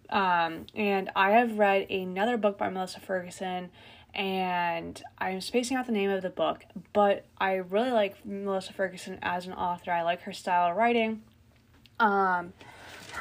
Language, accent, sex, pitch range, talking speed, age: English, American, female, 190-230 Hz, 160 wpm, 10-29